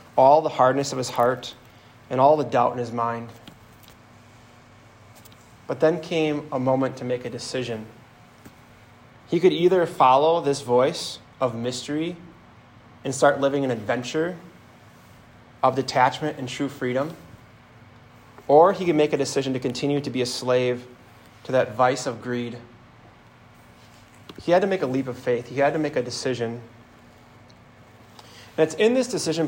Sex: male